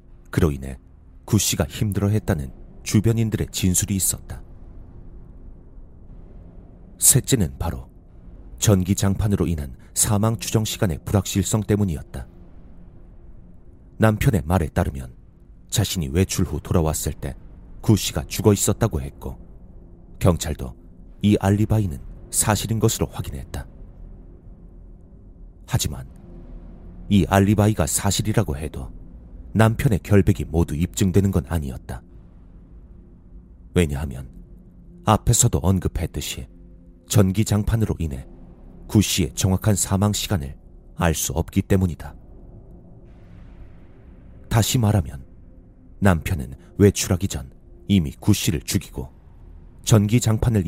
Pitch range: 80-100 Hz